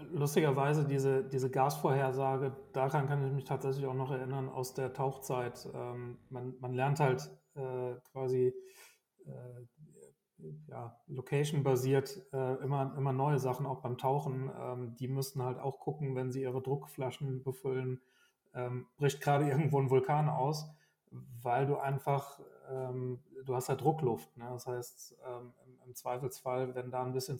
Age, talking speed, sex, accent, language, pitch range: 30-49, 150 wpm, male, German, German, 130-145 Hz